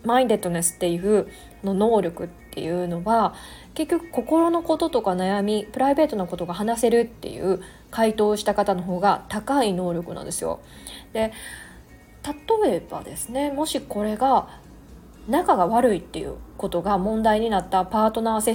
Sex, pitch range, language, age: female, 190-270 Hz, Japanese, 20-39